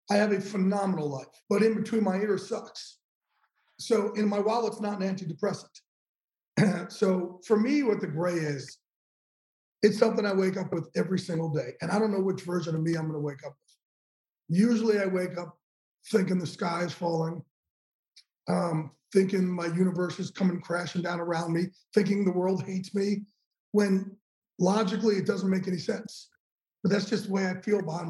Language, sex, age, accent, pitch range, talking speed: English, male, 40-59, American, 175-210 Hz, 190 wpm